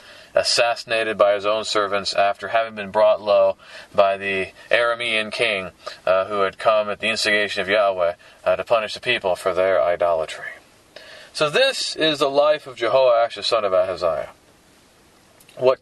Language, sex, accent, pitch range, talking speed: English, male, American, 105-140 Hz, 165 wpm